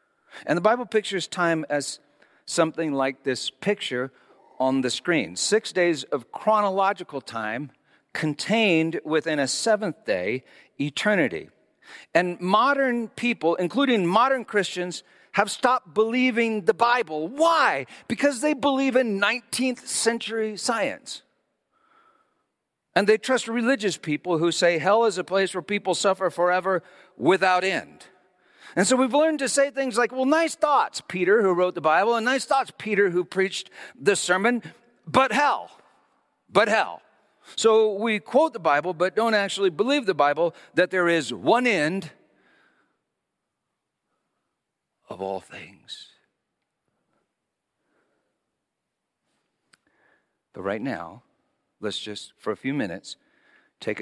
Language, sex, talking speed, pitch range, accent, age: English, male, 130 wpm, 160-240 Hz, American, 50-69